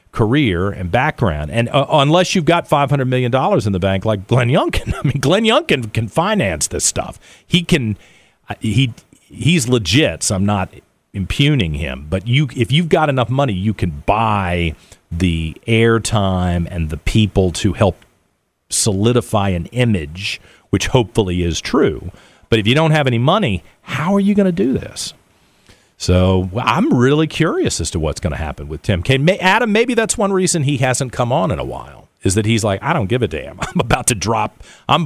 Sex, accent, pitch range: male, American, 95-145 Hz